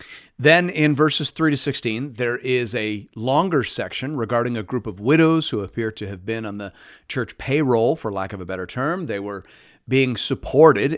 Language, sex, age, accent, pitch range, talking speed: English, male, 40-59, American, 110-145 Hz, 190 wpm